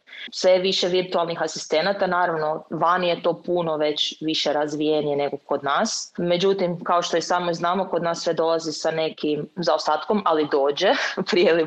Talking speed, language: 165 wpm, Croatian